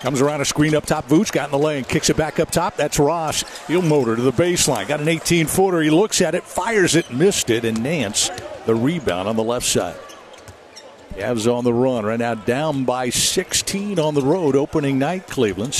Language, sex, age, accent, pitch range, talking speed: English, male, 50-69, American, 125-155 Hz, 215 wpm